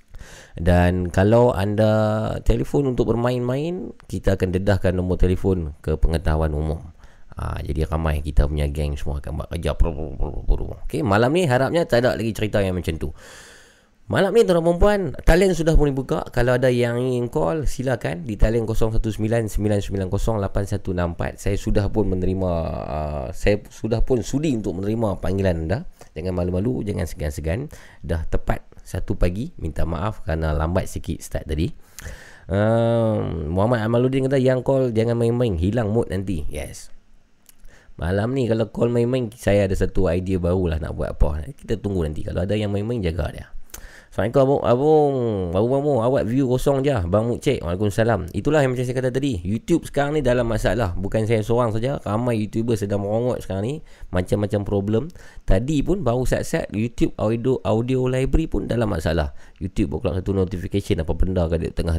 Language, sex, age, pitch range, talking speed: Malay, male, 20-39, 85-120 Hz, 160 wpm